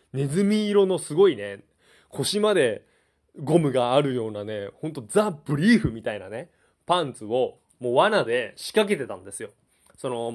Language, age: Japanese, 20-39